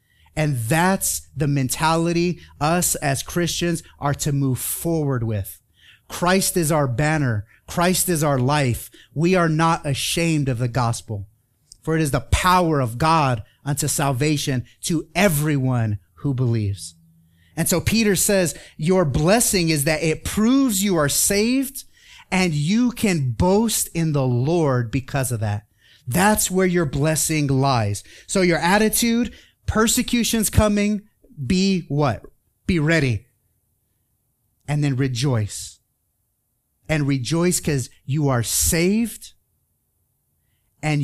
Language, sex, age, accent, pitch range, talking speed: English, male, 30-49, American, 125-180 Hz, 130 wpm